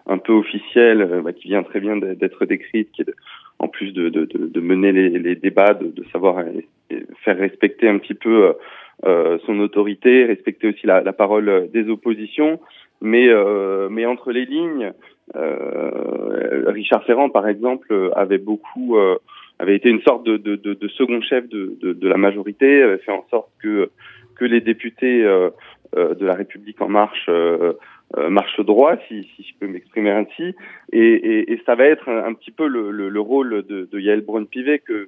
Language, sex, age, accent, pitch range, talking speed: French, male, 20-39, French, 105-175 Hz, 195 wpm